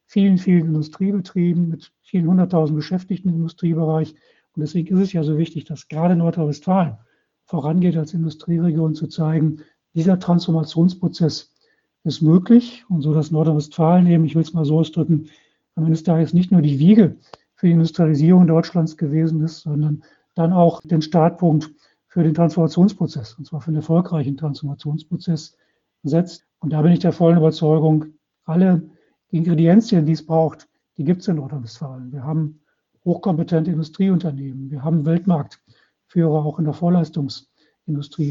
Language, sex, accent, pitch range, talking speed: German, male, German, 155-175 Hz, 150 wpm